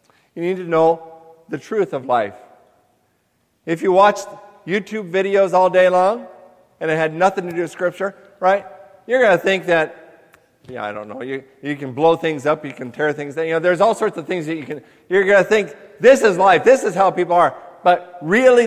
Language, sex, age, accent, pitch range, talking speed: English, male, 50-69, American, 155-200 Hz, 220 wpm